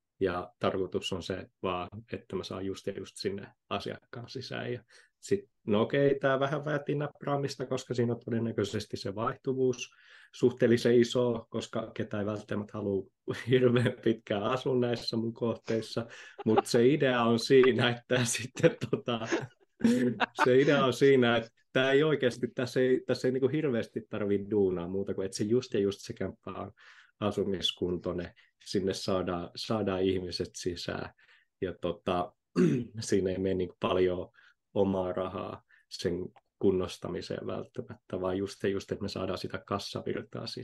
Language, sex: Finnish, male